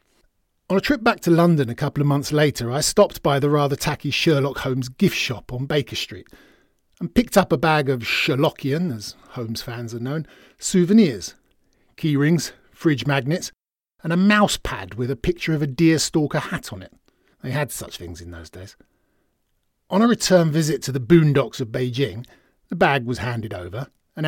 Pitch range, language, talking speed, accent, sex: 125-160 Hz, English, 190 wpm, British, male